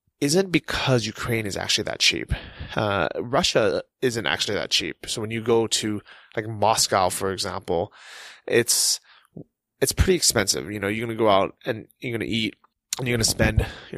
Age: 20-39